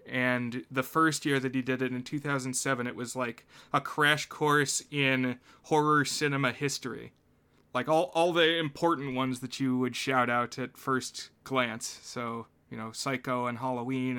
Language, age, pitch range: English, 20-39, 125-145 Hz